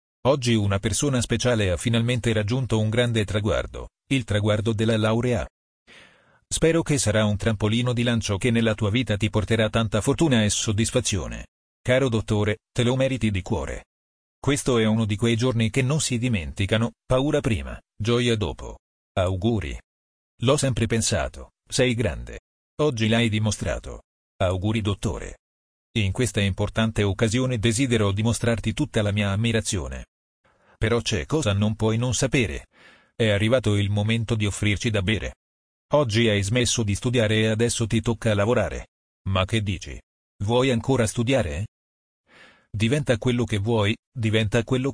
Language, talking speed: Italian, 145 wpm